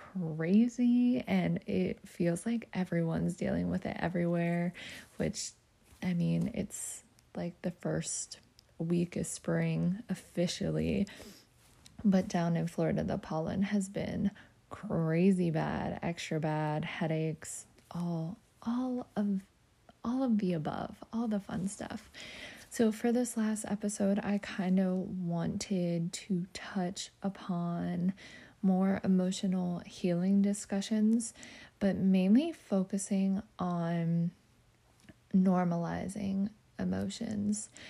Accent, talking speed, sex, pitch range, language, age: American, 105 wpm, female, 170-200 Hz, English, 20-39